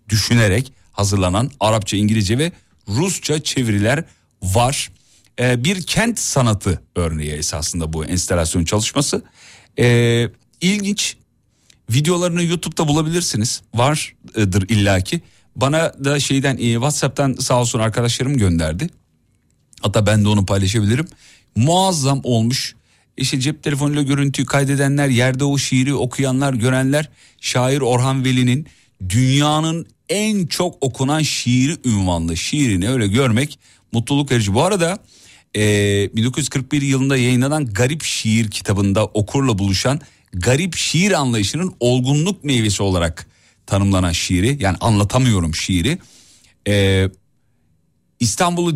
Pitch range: 100-140 Hz